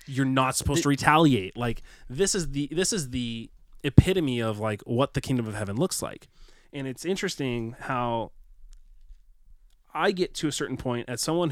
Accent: American